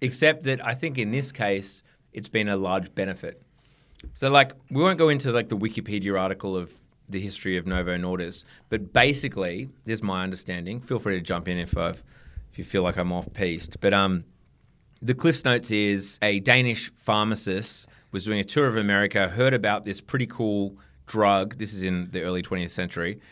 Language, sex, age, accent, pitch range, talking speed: English, male, 30-49, Australian, 95-120 Hz, 190 wpm